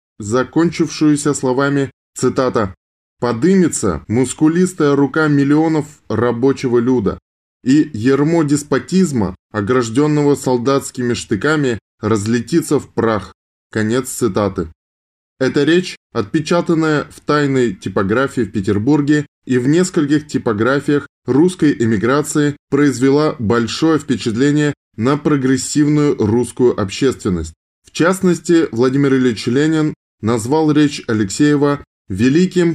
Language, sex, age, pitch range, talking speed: Russian, male, 20-39, 110-145 Hz, 90 wpm